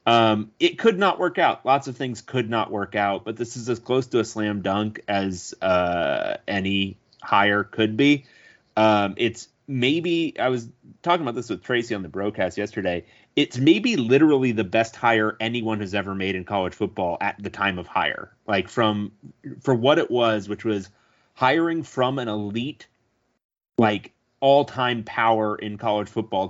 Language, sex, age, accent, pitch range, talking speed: English, male, 30-49, American, 100-125 Hz, 180 wpm